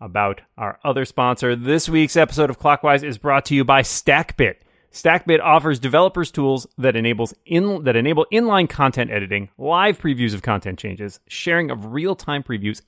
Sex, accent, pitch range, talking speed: male, American, 110-145 Hz, 170 wpm